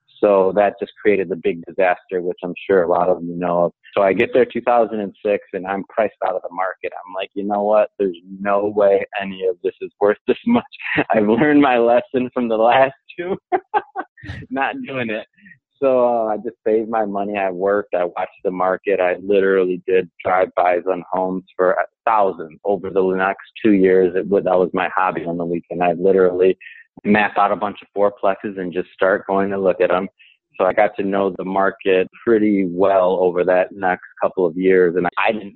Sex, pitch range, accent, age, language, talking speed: male, 90-115 Hz, American, 30-49, English, 210 wpm